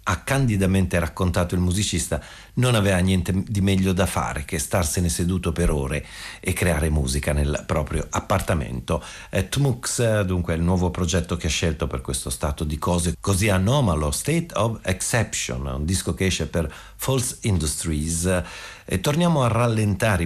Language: Italian